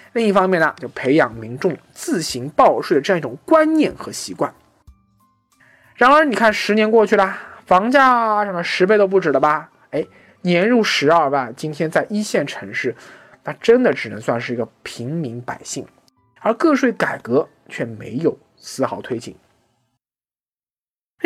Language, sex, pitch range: Chinese, male, 155-255 Hz